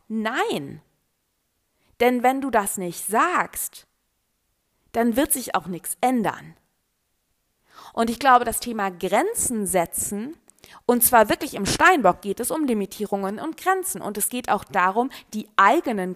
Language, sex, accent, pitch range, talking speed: German, female, German, 195-270 Hz, 140 wpm